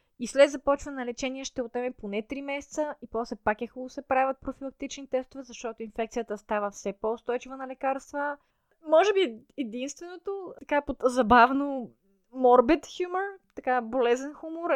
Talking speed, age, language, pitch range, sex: 150 wpm, 20-39, Bulgarian, 230-280 Hz, female